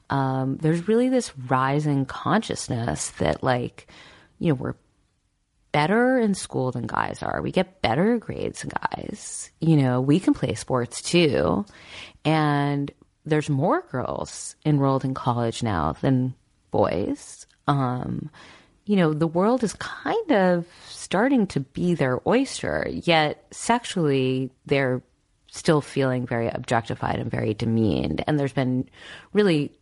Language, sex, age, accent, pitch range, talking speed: English, female, 30-49, American, 120-165 Hz, 135 wpm